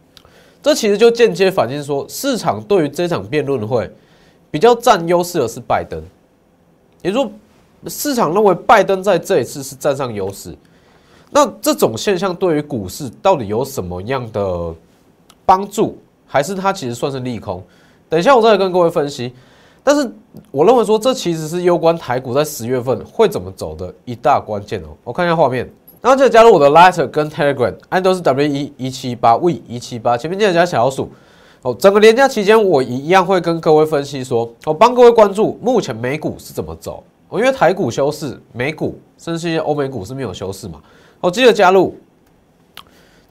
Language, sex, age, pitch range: Chinese, male, 20-39, 130-210 Hz